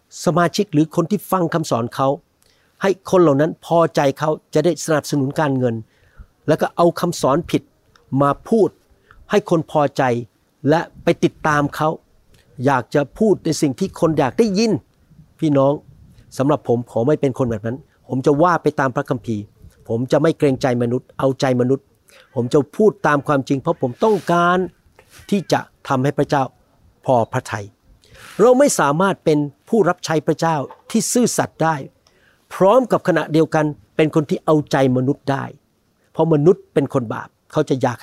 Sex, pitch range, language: male, 130-165 Hz, Thai